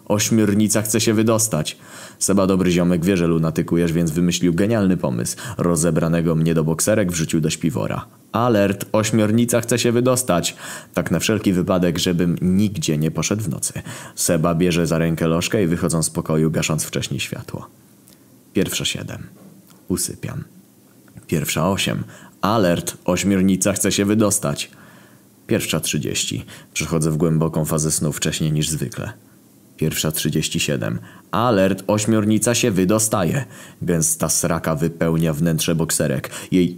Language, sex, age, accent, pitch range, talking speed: Polish, male, 20-39, native, 80-100 Hz, 130 wpm